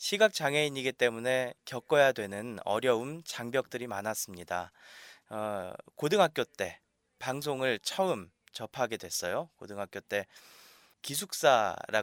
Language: Korean